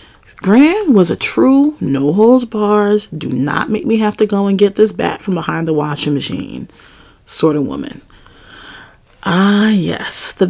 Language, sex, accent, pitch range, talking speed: English, female, American, 160-225 Hz, 70 wpm